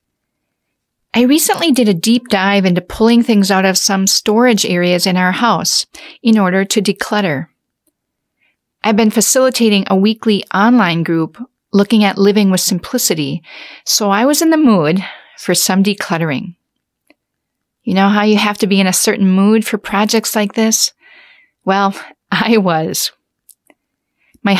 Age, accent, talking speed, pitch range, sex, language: 40-59, American, 150 wpm, 190-225 Hz, female, English